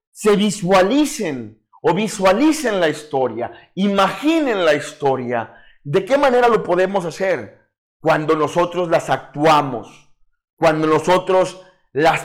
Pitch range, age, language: 125-195 Hz, 40-59, Spanish